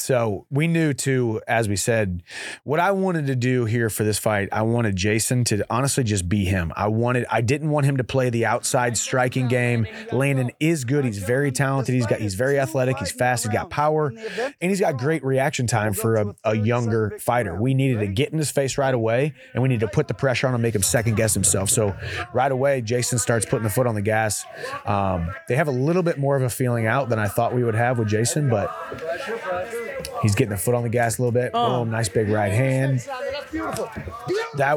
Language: English